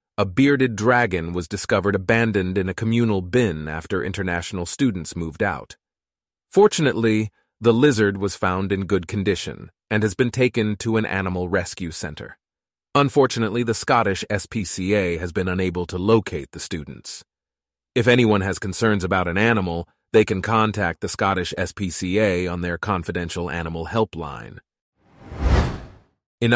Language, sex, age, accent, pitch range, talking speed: English, male, 30-49, American, 90-115 Hz, 140 wpm